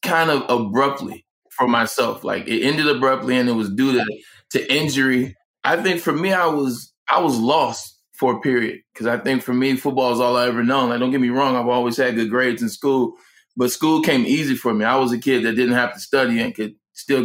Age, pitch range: 20-39, 120-145 Hz